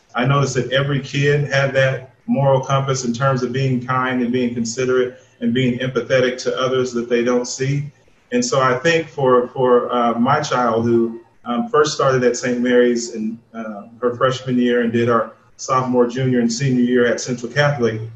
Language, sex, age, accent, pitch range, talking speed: English, male, 30-49, American, 120-135 Hz, 190 wpm